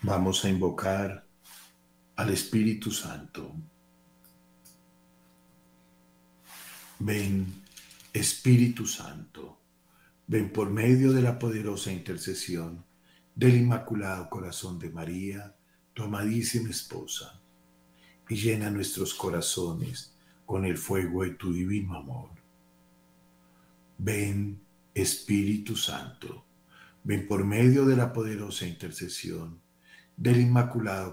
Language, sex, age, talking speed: Spanish, male, 50-69, 90 wpm